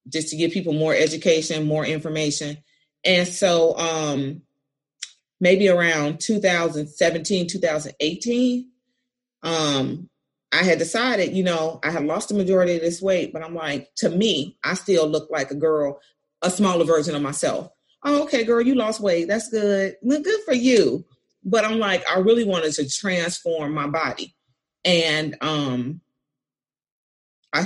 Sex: female